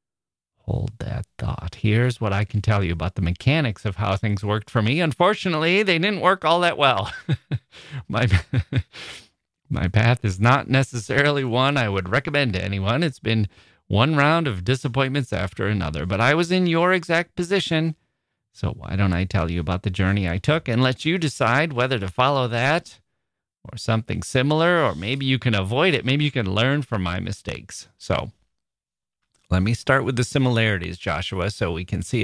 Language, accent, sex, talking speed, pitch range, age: English, American, male, 185 wpm, 100-135 Hz, 30-49